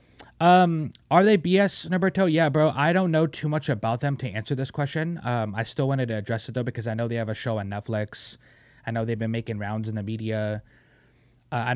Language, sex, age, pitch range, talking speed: English, male, 20-39, 115-135 Hz, 240 wpm